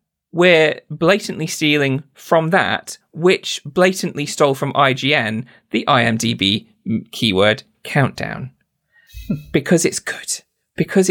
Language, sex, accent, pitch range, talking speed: English, male, British, 115-160 Hz, 95 wpm